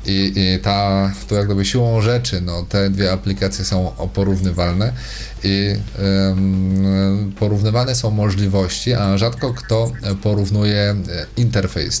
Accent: native